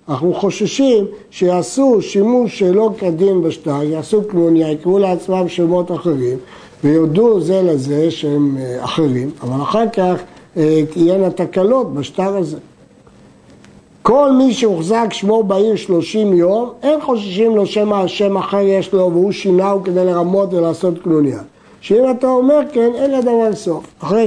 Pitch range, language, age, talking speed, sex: 160-215 Hz, Hebrew, 60-79, 135 wpm, male